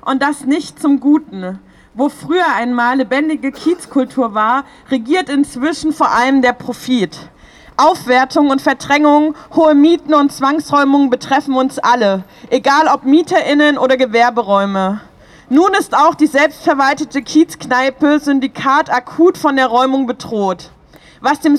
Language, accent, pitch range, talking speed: German, German, 255-310 Hz, 130 wpm